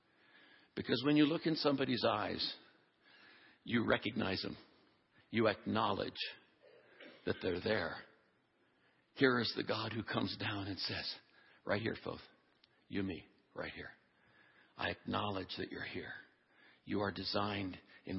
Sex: male